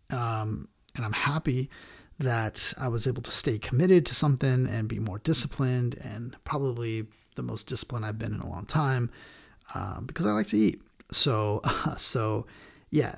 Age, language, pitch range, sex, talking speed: 30-49, English, 110-130 Hz, male, 175 wpm